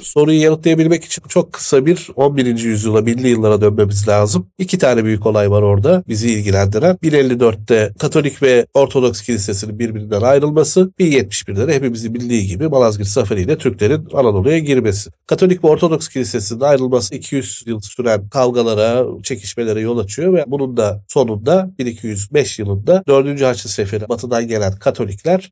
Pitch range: 110-150 Hz